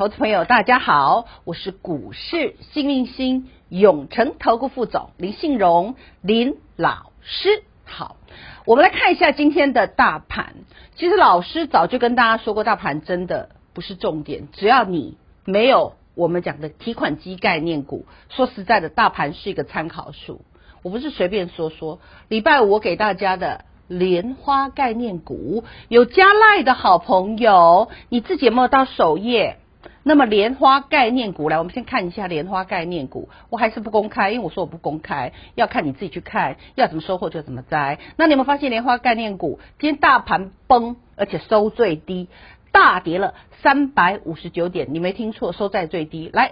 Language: Chinese